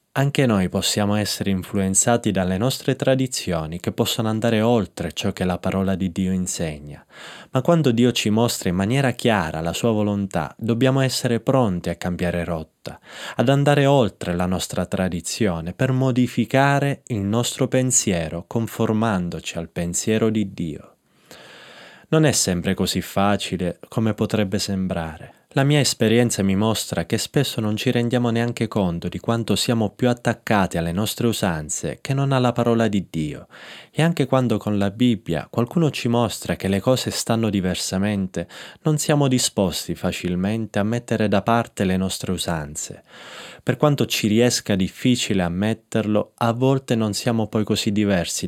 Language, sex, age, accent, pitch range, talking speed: Italian, male, 20-39, native, 95-120 Hz, 155 wpm